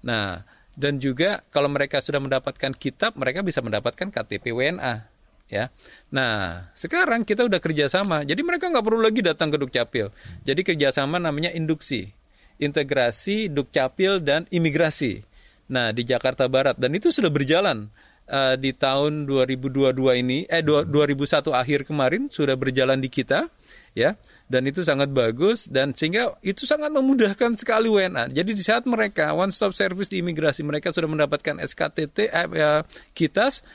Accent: native